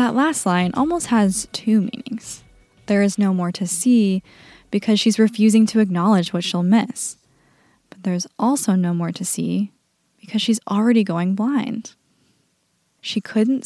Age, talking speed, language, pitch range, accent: 10-29, 155 wpm, English, 185-240 Hz, American